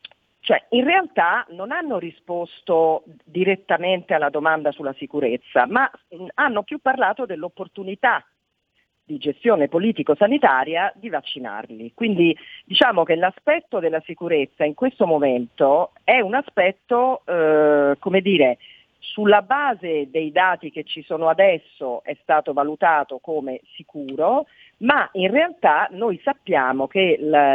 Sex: female